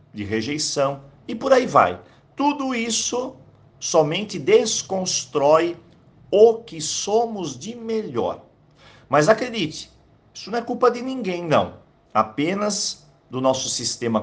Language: Portuguese